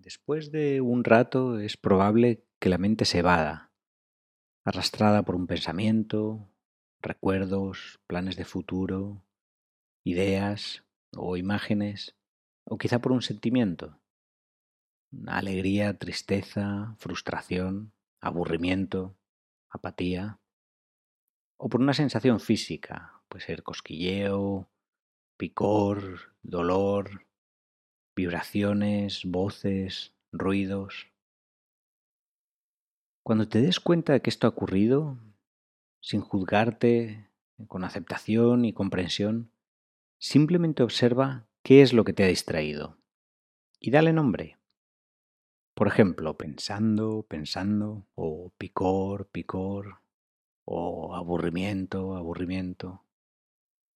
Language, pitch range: Spanish, 95-110 Hz